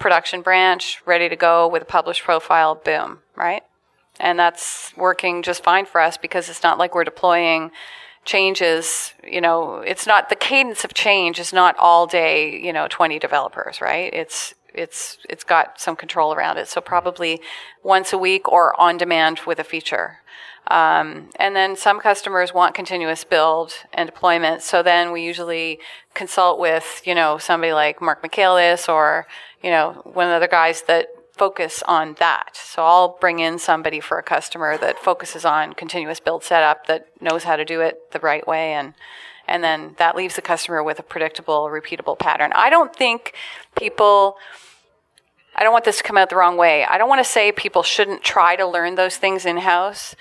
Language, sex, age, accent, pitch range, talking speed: English, female, 30-49, American, 165-185 Hz, 190 wpm